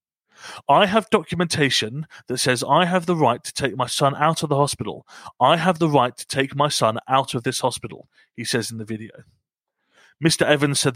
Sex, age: male, 30-49